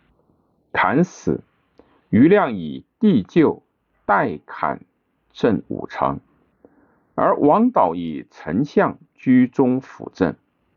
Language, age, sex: Chinese, 50-69, male